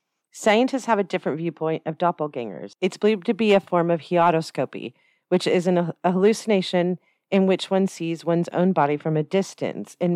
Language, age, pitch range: English, 40-59, 160-200 Hz